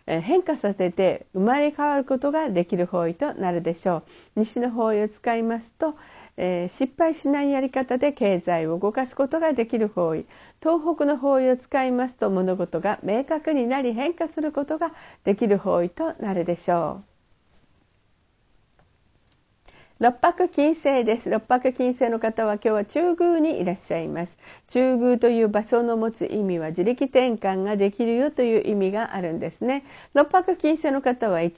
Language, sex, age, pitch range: Japanese, female, 50-69, 200-280 Hz